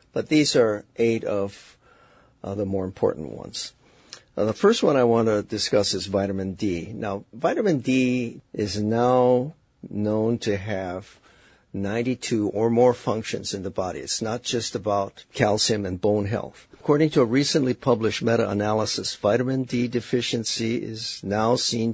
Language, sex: English, male